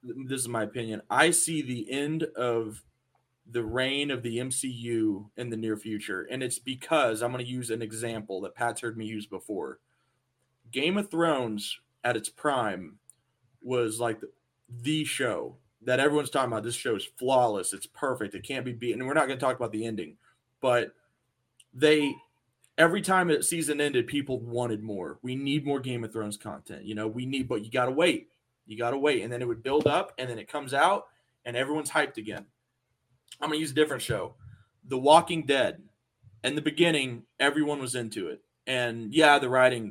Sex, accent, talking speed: male, American, 200 wpm